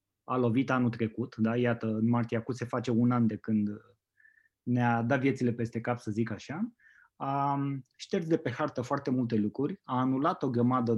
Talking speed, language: 190 wpm, Romanian